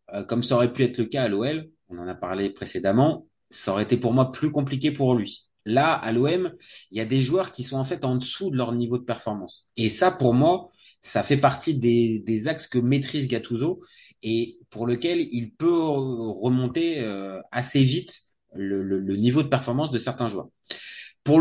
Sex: male